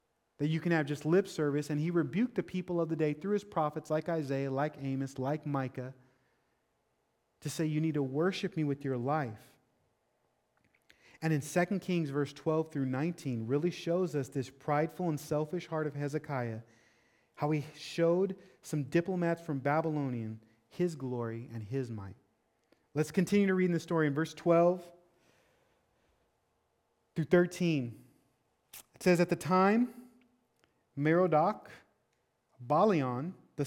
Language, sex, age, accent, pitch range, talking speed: English, male, 30-49, American, 135-175 Hz, 150 wpm